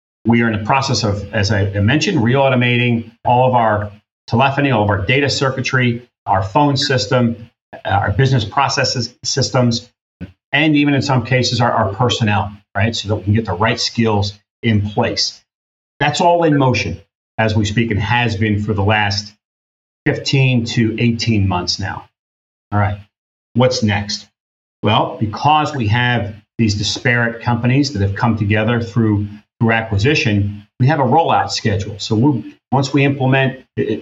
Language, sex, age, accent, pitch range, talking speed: English, male, 40-59, American, 105-130 Hz, 160 wpm